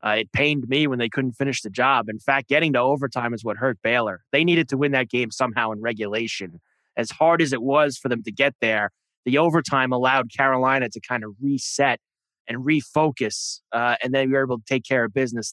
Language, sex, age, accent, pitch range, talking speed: English, male, 20-39, American, 120-145 Hz, 230 wpm